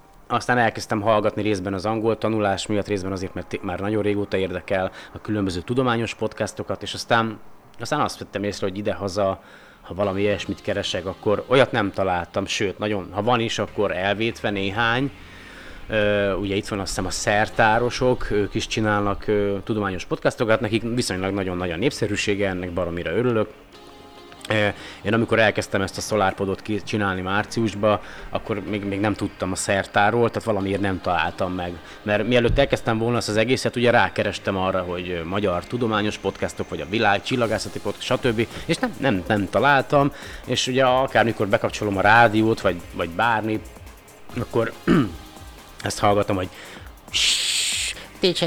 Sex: male